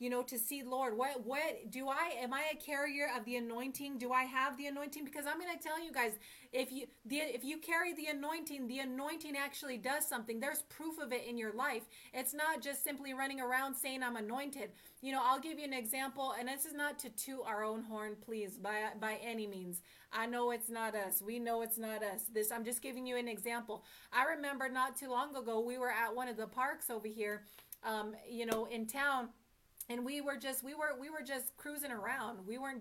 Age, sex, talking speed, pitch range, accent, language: 30-49, female, 235 wpm, 220-265 Hz, American, English